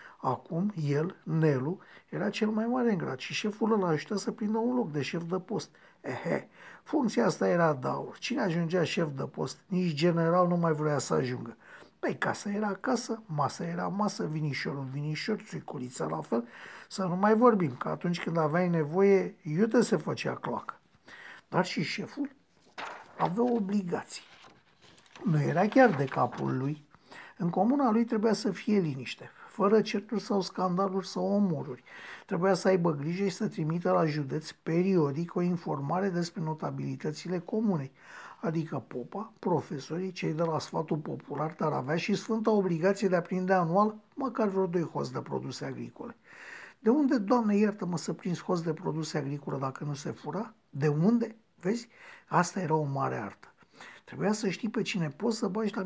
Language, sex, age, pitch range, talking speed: Romanian, male, 50-69, 160-210 Hz, 170 wpm